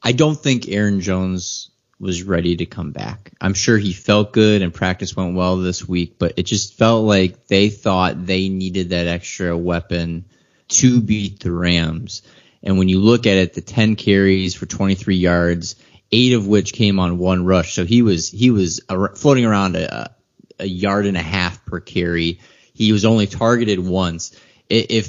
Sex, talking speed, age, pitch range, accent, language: male, 185 wpm, 20-39, 95-120 Hz, American, English